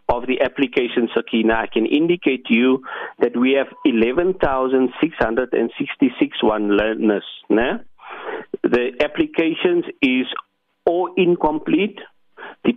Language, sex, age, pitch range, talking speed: English, male, 50-69, 120-180 Hz, 105 wpm